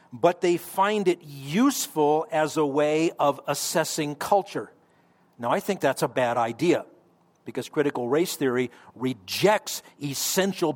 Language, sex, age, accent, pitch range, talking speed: English, male, 50-69, American, 145-185 Hz, 135 wpm